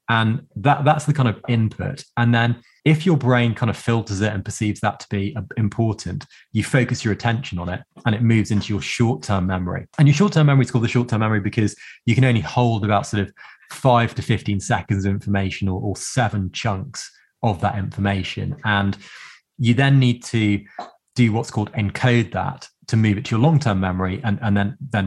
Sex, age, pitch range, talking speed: male, 20-39, 100-120 Hz, 205 wpm